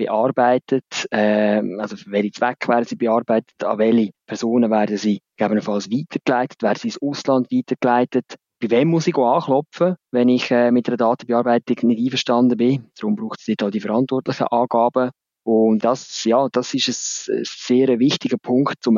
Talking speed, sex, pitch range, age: 170 wpm, male, 110-125 Hz, 20-39